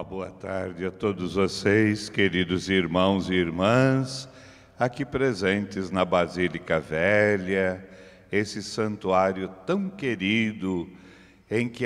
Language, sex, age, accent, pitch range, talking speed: Portuguese, male, 60-79, Brazilian, 95-120 Hz, 100 wpm